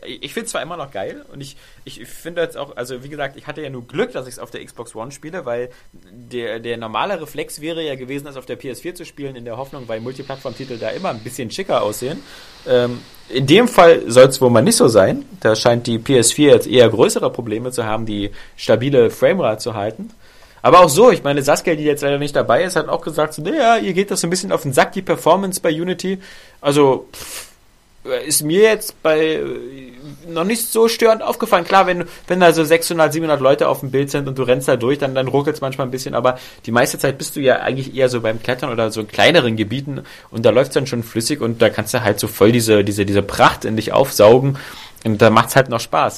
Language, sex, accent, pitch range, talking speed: German, male, German, 120-165 Hz, 245 wpm